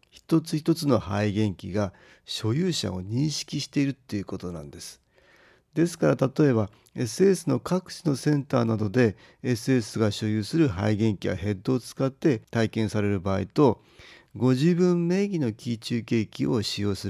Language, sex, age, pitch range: Japanese, male, 40-59, 105-145 Hz